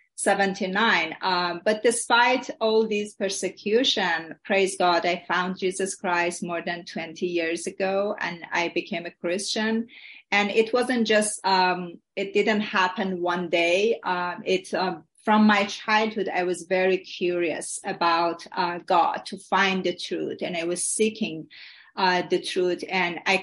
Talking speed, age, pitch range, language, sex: 155 wpm, 30-49, 180-210 Hz, English, female